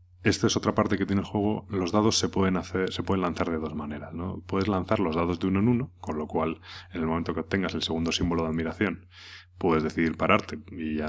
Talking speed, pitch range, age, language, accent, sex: 250 wpm, 80-95 Hz, 30-49, Spanish, Spanish, male